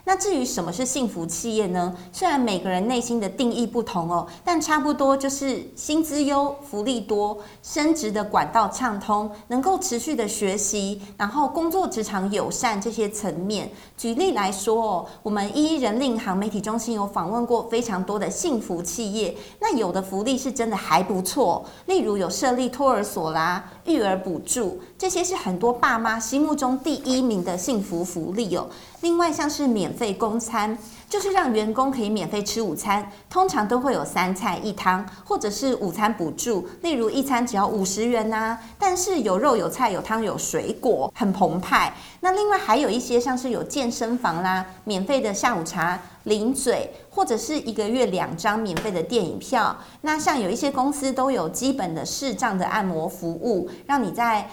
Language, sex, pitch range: Chinese, female, 200-265 Hz